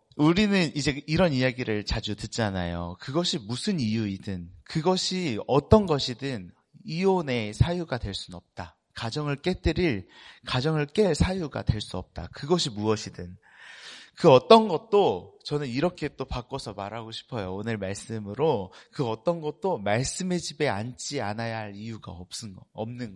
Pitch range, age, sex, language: 105-160 Hz, 40-59, male, Korean